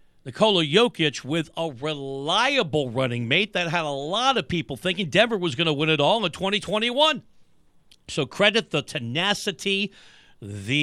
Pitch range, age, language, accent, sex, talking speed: 145-195 Hz, 50-69, English, American, male, 155 wpm